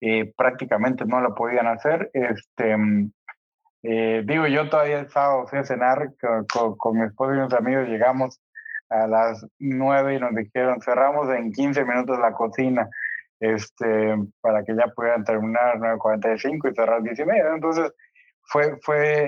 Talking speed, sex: 160 wpm, male